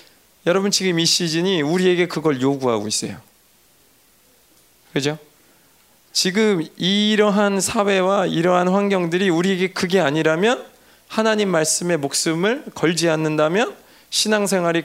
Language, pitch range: Korean, 150-195 Hz